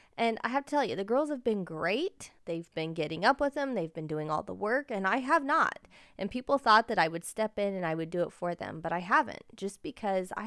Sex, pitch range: female, 185-250 Hz